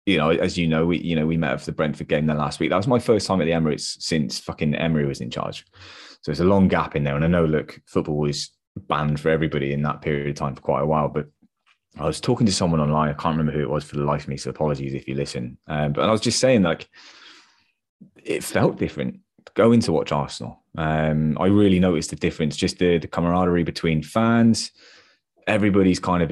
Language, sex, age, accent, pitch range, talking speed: English, male, 20-39, British, 75-95 Hz, 245 wpm